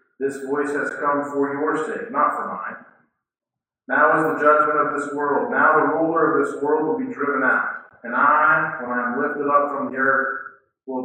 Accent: American